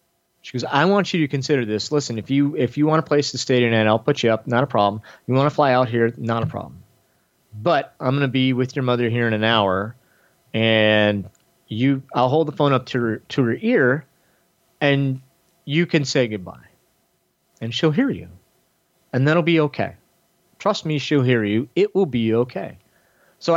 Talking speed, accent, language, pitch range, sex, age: 215 wpm, American, English, 110-145 Hz, male, 30-49